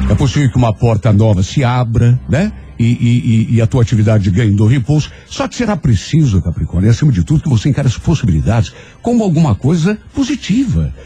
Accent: Brazilian